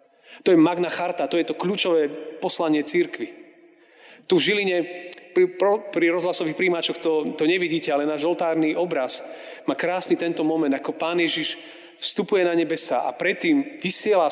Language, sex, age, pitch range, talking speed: Slovak, male, 40-59, 160-185 Hz, 160 wpm